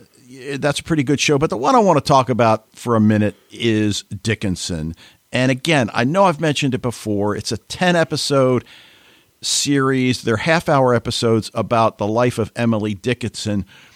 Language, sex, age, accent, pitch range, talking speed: English, male, 50-69, American, 110-145 Hz, 175 wpm